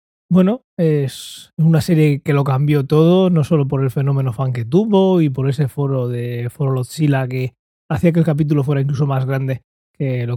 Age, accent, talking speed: 20-39, Spanish, 195 wpm